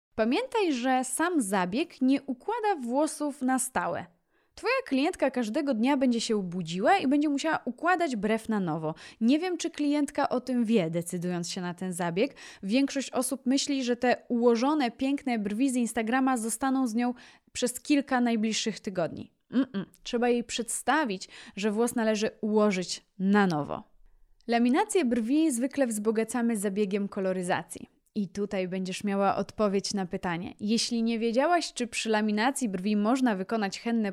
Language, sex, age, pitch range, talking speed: Polish, female, 20-39, 200-270 Hz, 150 wpm